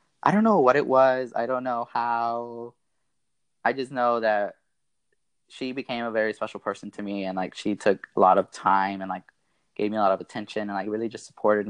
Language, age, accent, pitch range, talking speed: English, 20-39, American, 105-125 Hz, 220 wpm